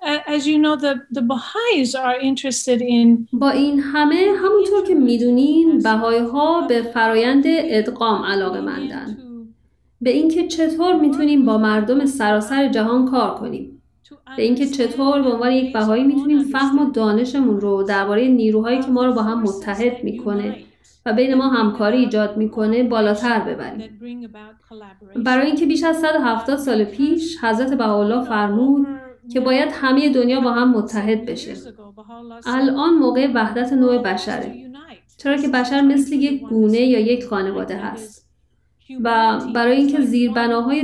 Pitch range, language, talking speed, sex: 220-275 Hz, Persian, 130 wpm, female